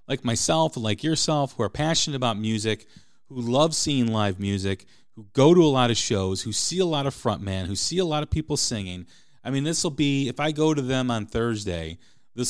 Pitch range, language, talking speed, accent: 115-155 Hz, English, 230 wpm, American